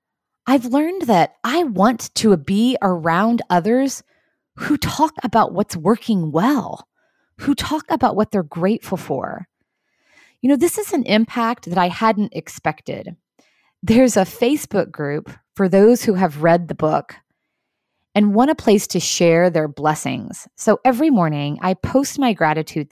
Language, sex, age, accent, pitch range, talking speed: English, female, 20-39, American, 165-240 Hz, 150 wpm